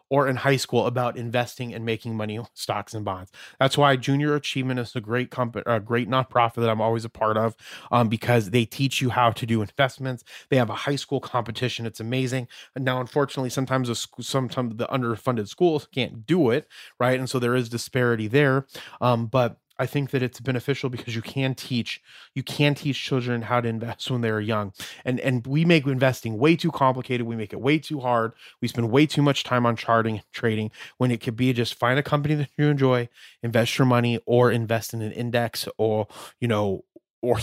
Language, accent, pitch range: English, American, 115-135 Hz